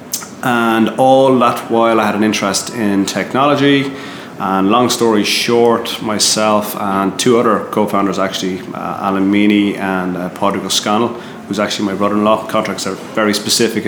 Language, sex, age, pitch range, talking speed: English, male, 30-49, 100-110 Hz, 155 wpm